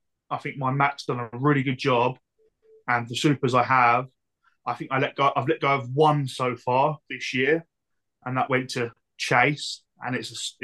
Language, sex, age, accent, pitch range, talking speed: English, male, 20-39, British, 125-150 Hz, 205 wpm